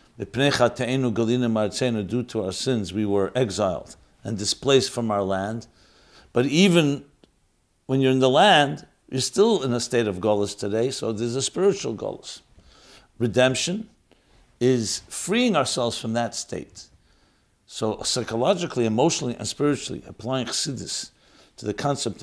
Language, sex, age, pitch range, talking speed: English, male, 60-79, 110-135 Hz, 130 wpm